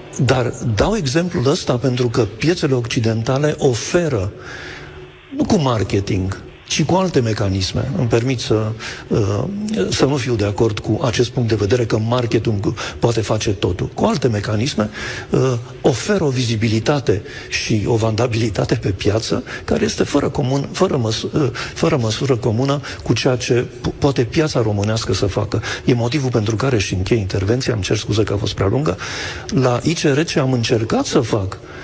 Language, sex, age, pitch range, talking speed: Romanian, male, 50-69, 110-140 Hz, 160 wpm